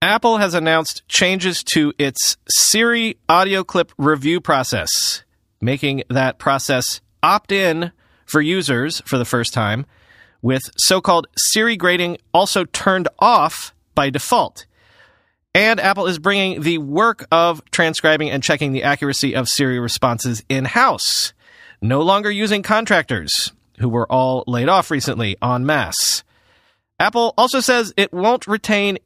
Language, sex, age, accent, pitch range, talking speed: English, male, 30-49, American, 135-190 Hz, 135 wpm